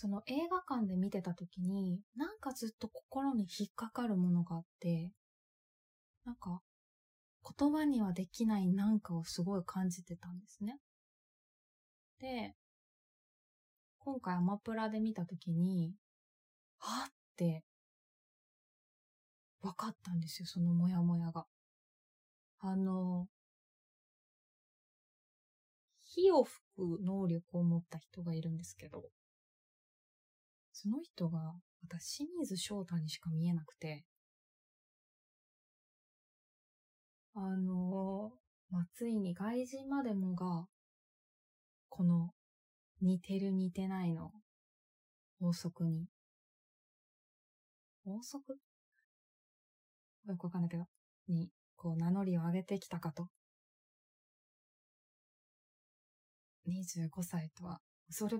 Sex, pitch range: female, 170-215 Hz